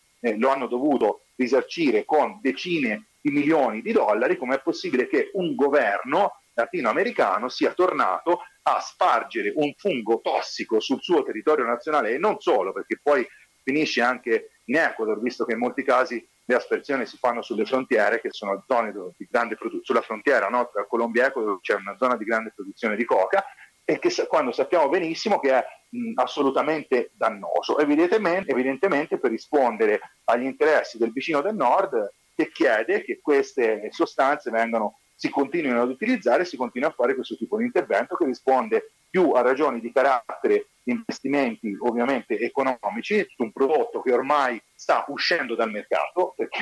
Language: Italian